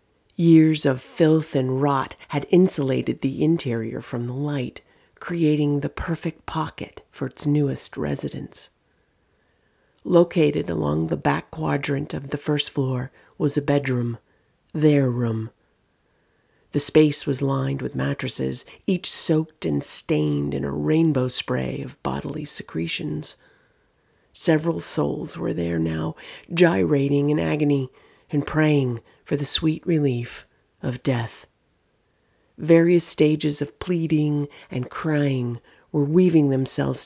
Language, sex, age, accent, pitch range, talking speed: English, female, 40-59, American, 120-155 Hz, 125 wpm